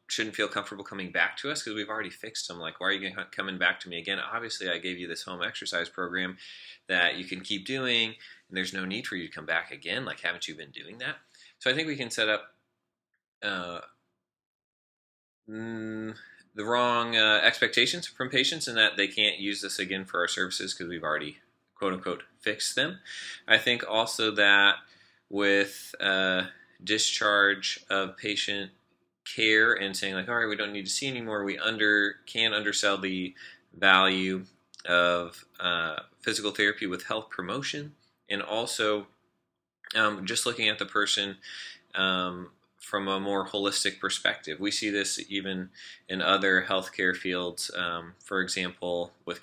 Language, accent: English, American